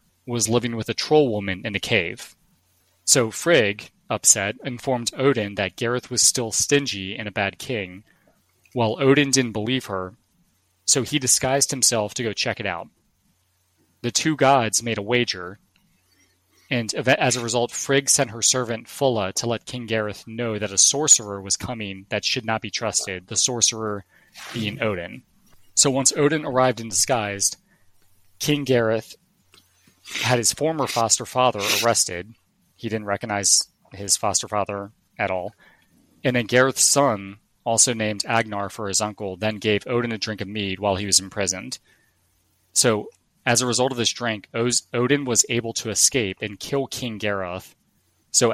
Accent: American